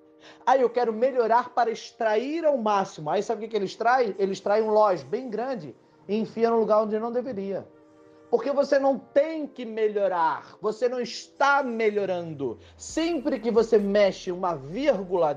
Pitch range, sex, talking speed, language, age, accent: 195-260 Hz, male, 170 wpm, Portuguese, 30-49, Brazilian